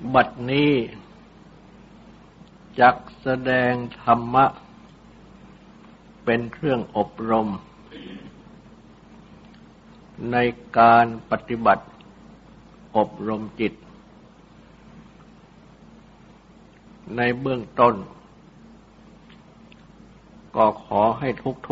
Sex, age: male, 60-79